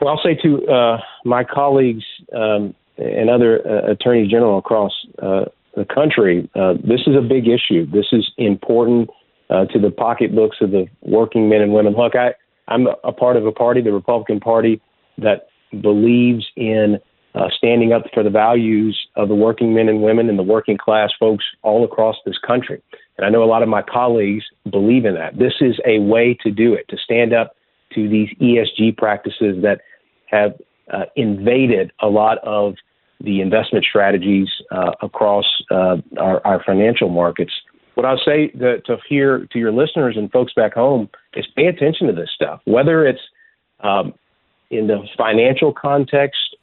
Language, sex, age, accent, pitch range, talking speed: English, male, 40-59, American, 105-125 Hz, 175 wpm